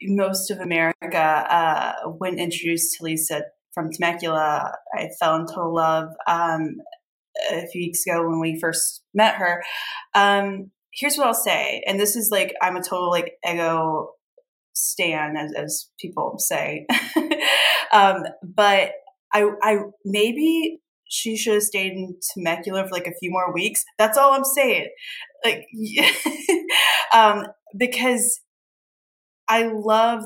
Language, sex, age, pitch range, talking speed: English, female, 10-29, 175-235 Hz, 140 wpm